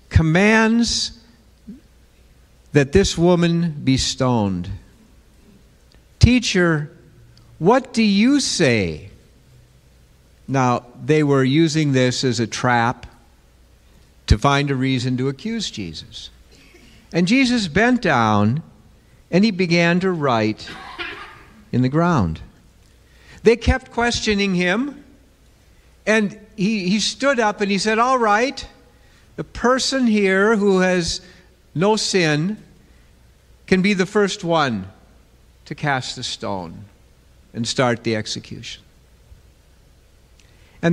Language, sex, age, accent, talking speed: English, male, 50-69, American, 105 wpm